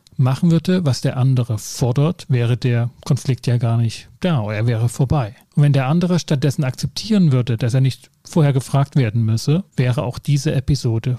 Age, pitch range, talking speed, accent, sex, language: 40-59, 120-145 Hz, 180 wpm, German, male, German